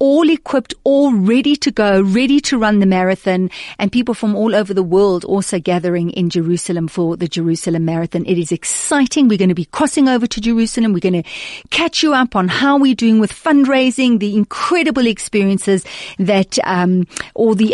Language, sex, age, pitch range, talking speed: English, female, 40-59, 175-215 Hz, 190 wpm